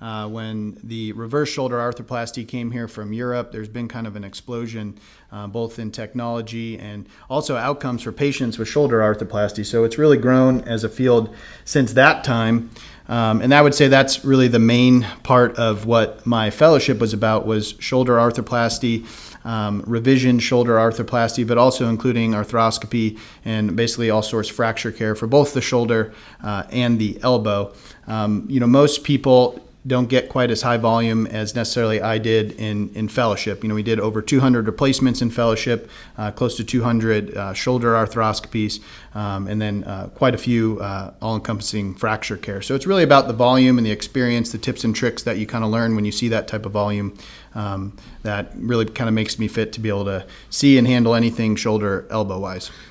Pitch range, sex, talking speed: 110-120 Hz, male, 190 wpm